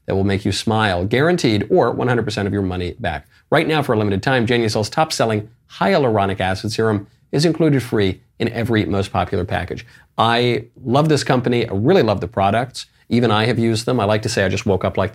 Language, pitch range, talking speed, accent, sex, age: English, 100-125 Hz, 215 wpm, American, male, 40-59